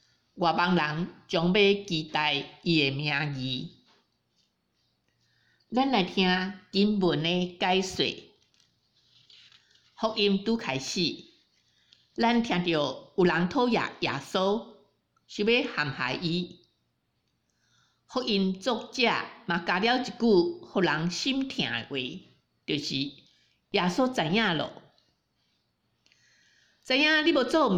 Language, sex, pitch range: Chinese, female, 165-230 Hz